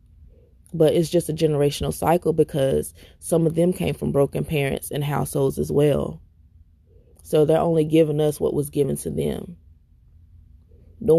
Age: 20-39